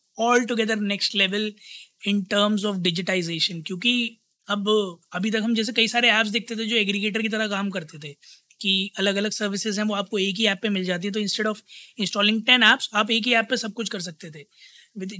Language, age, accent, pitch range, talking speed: Hindi, 20-39, native, 190-230 Hz, 225 wpm